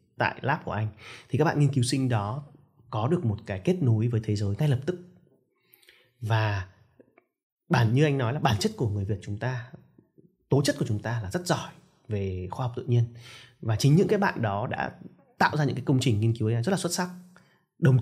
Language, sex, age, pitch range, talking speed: Vietnamese, male, 20-39, 110-140 Hz, 230 wpm